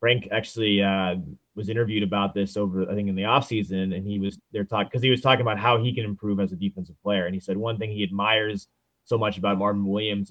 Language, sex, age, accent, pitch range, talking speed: English, male, 30-49, American, 100-125 Hz, 255 wpm